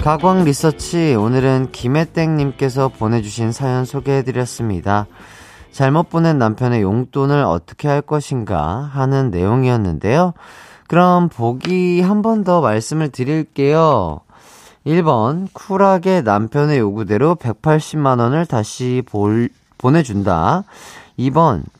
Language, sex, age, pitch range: Korean, male, 30-49, 110-155 Hz